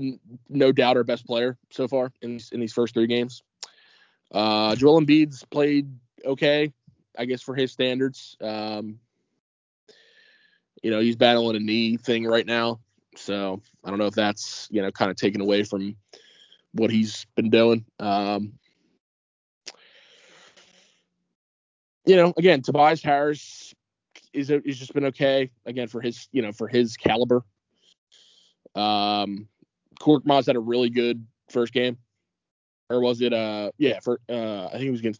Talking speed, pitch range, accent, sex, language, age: 155 wpm, 105-130 Hz, American, male, English, 20-39